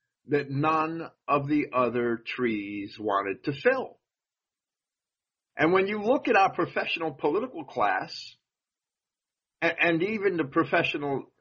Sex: male